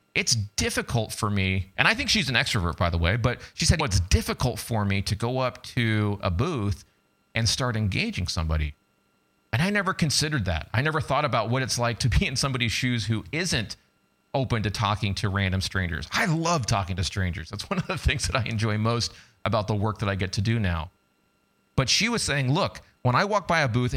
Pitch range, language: 100-140 Hz, English